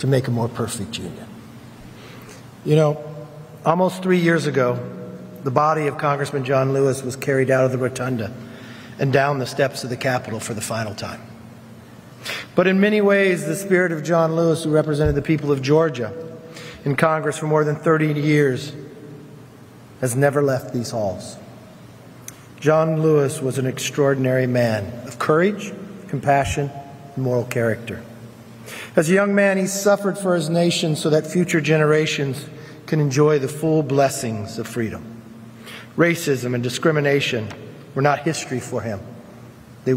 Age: 50-69